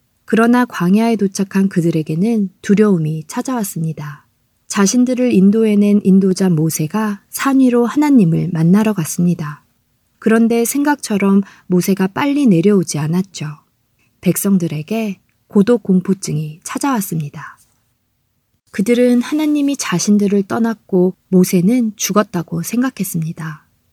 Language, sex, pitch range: Korean, female, 170-220 Hz